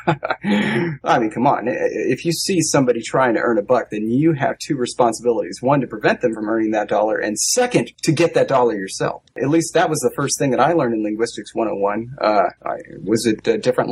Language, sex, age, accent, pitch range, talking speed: English, male, 30-49, American, 130-170 Hz, 225 wpm